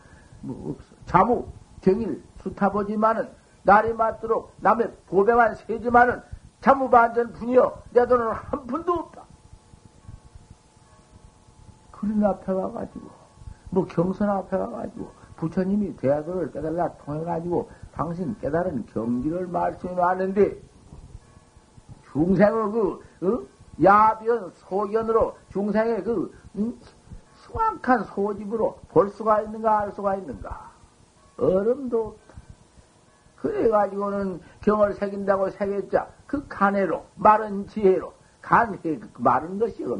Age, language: 60-79, Korean